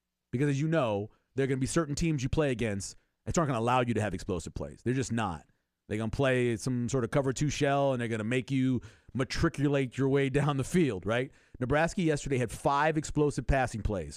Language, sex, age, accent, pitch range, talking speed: English, male, 40-59, American, 110-145 Hz, 240 wpm